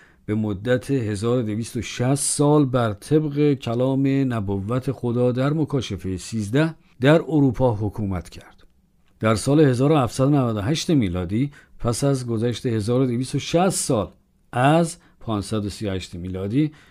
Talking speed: 100 wpm